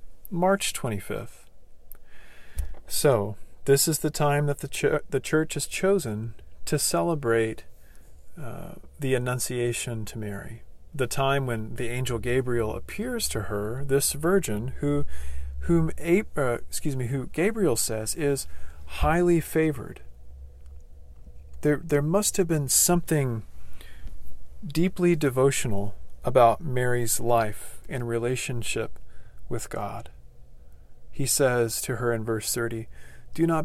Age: 40-59